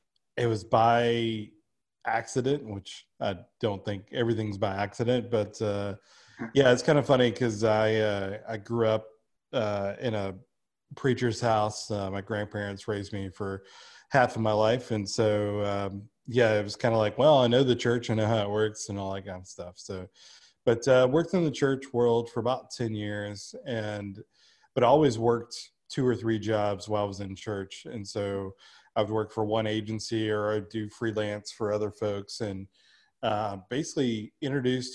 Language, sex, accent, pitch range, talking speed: English, male, American, 105-115 Hz, 185 wpm